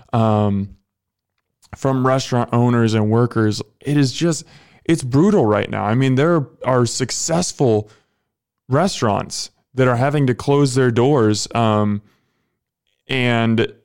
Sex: male